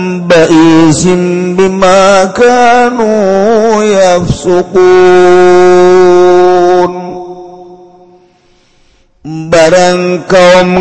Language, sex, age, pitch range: Indonesian, male, 50-69, 180-190 Hz